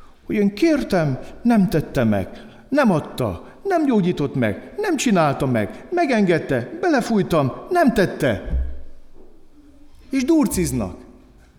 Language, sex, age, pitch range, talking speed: Hungarian, male, 60-79, 110-170 Hz, 105 wpm